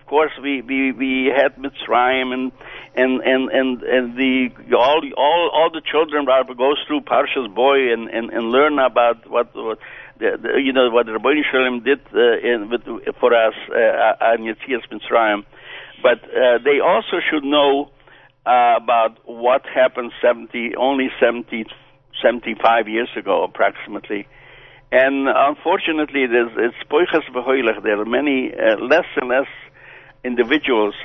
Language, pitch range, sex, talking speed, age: English, 120-150 Hz, male, 150 wpm, 60-79